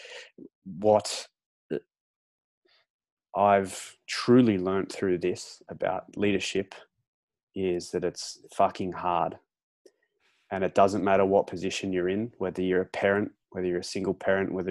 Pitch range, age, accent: 90-100 Hz, 20-39, Australian